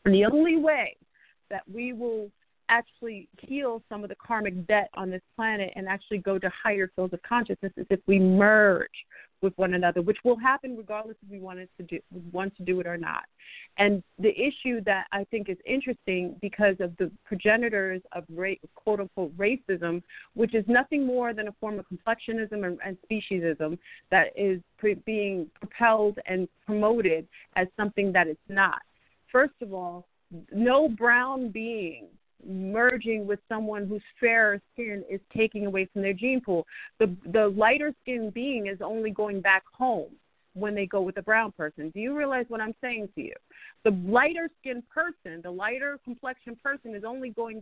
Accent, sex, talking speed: American, female, 180 wpm